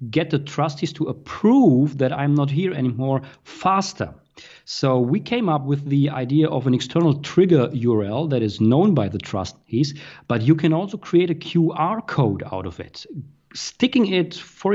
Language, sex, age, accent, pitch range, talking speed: English, male, 40-59, German, 125-160 Hz, 175 wpm